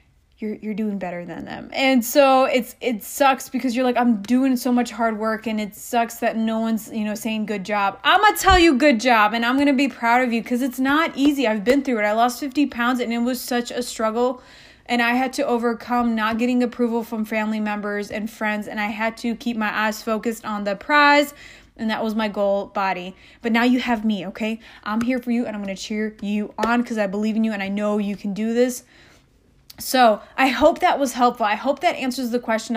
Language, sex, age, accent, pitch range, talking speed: English, female, 20-39, American, 220-260 Hz, 240 wpm